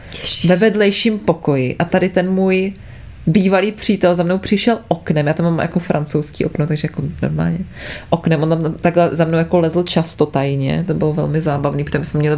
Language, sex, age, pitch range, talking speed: Czech, female, 20-39, 160-185 Hz, 190 wpm